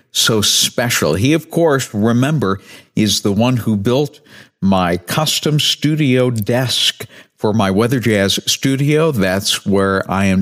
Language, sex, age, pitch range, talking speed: English, male, 50-69, 100-135 Hz, 140 wpm